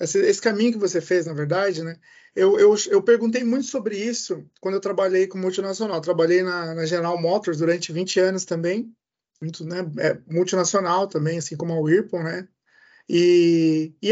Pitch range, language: 175-235 Hz, Portuguese